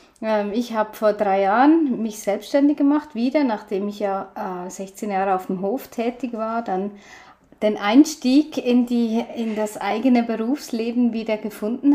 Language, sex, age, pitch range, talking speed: German, female, 30-49, 200-250 Hz, 150 wpm